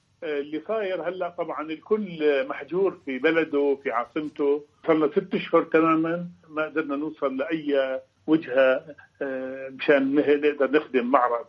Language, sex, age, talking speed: Arabic, male, 50-69, 125 wpm